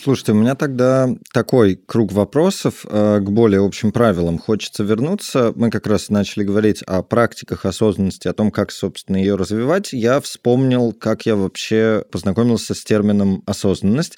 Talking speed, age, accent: 150 wpm, 20-39, native